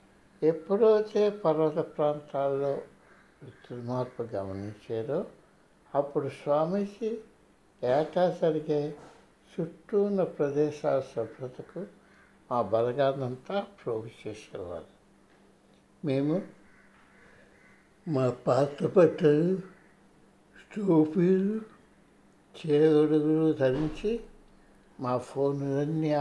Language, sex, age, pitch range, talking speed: Telugu, male, 60-79, 135-180 Hz, 60 wpm